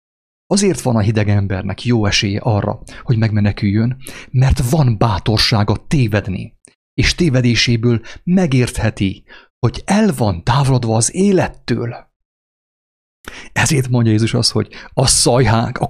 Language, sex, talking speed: English, male, 115 wpm